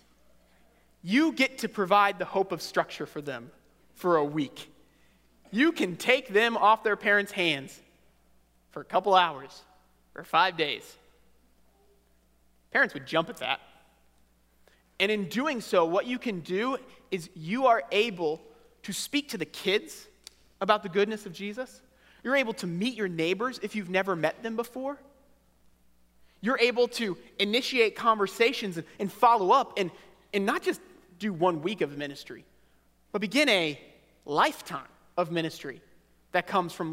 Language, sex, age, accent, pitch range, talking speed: English, male, 30-49, American, 135-205 Hz, 150 wpm